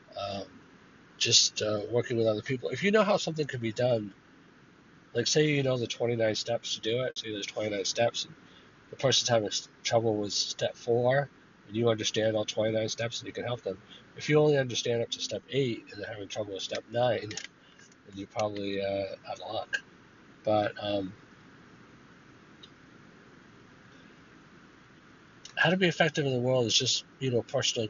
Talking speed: 180 wpm